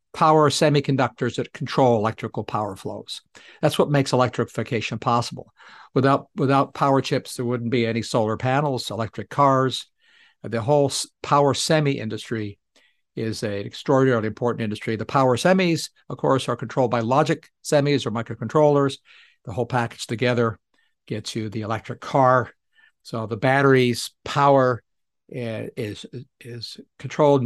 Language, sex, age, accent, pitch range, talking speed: English, male, 60-79, American, 115-140 Hz, 135 wpm